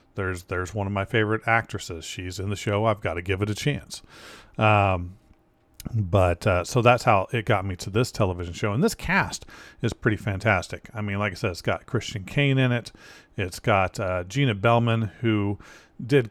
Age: 40-59